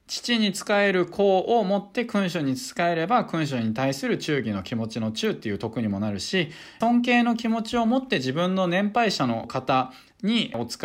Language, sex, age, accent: Japanese, male, 20-39, native